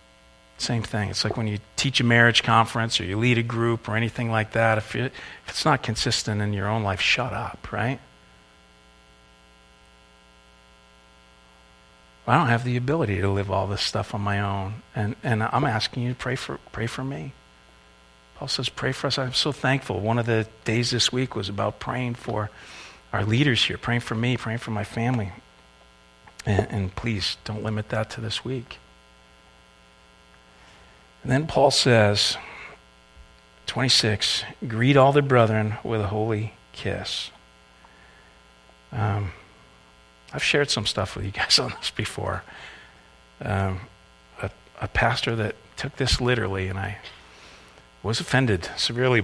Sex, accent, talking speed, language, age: male, American, 155 wpm, English, 50-69